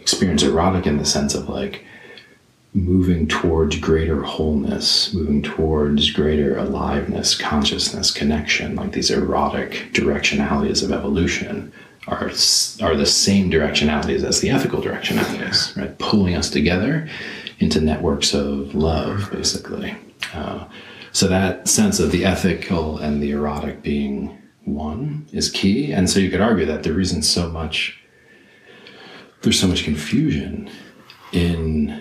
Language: English